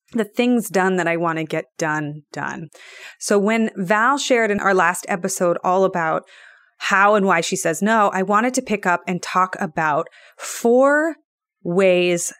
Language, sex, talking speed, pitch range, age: English, female, 175 wpm, 175-215 Hz, 30-49